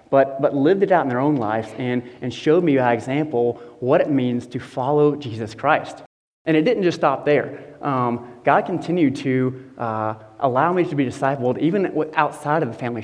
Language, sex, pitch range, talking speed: English, male, 120-155 Hz, 200 wpm